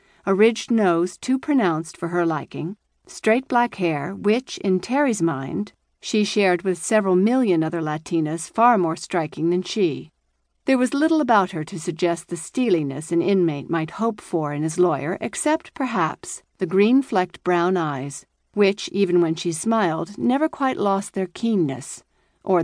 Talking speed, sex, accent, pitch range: 160 wpm, female, American, 165-210 Hz